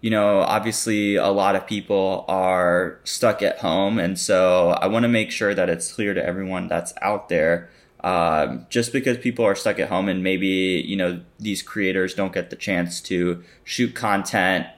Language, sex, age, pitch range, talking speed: English, male, 20-39, 90-110 Hz, 190 wpm